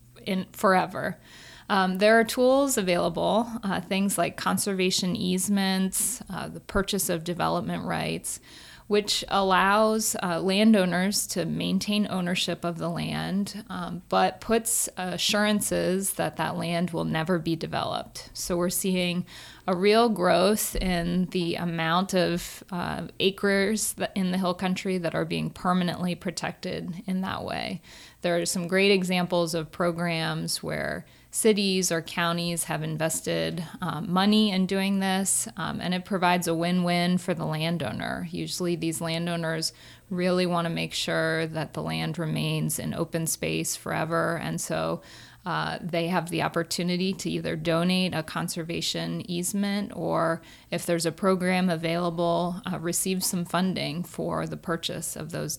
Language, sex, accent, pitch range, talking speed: English, female, American, 170-190 Hz, 145 wpm